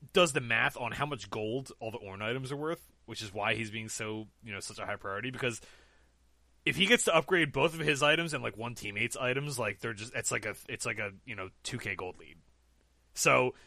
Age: 20-39